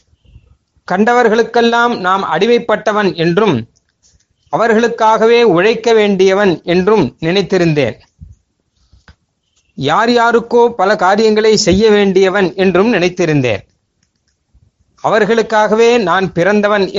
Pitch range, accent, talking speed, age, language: 165-215 Hz, native, 70 wpm, 30-49, Tamil